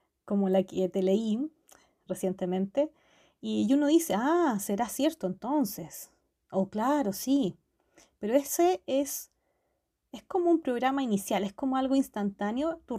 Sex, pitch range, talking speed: female, 195-275 Hz, 140 wpm